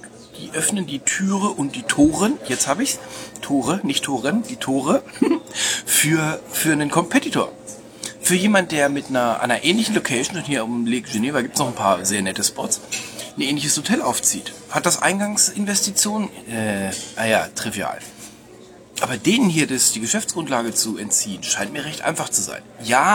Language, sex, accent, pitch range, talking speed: German, male, German, 120-180 Hz, 170 wpm